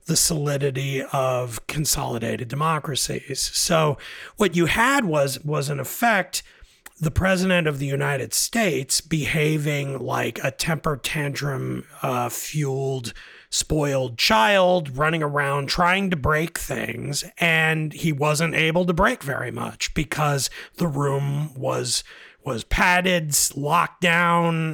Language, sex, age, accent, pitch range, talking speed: English, male, 30-49, American, 135-175 Hz, 120 wpm